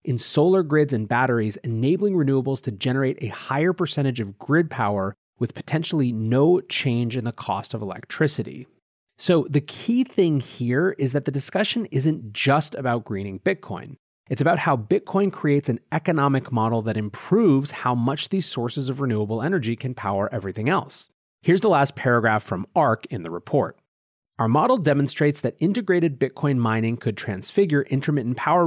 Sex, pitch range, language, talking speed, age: male, 115-155 Hz, English, 165 wpm, 30-49